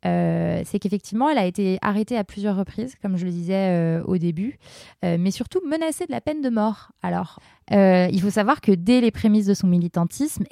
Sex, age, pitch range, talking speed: female, 20-39, 170-210 Hz, 215 wpm